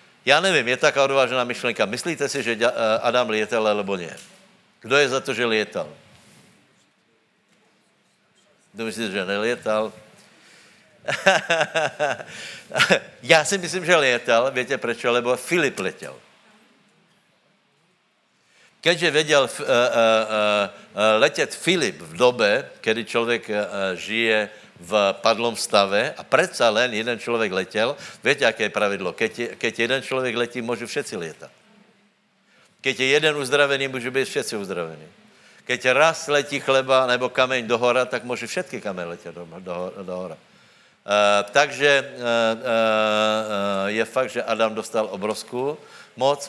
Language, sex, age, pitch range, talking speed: Slovak, male, 60-79, 110-140 Hz, 130 wpm